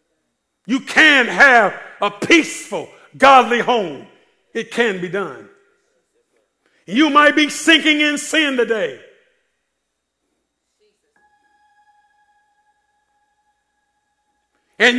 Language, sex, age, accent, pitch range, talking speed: English, male, 50-69, American, 240-320 Hz, 75 wpm